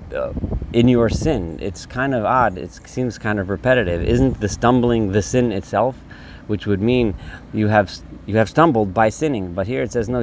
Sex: male